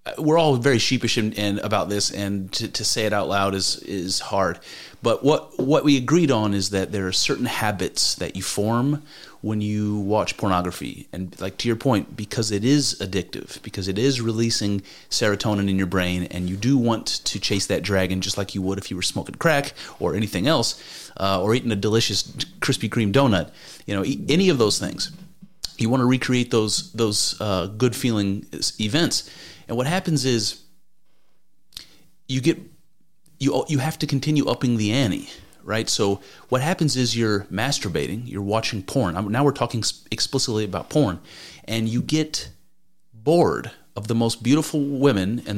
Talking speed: 180 wpm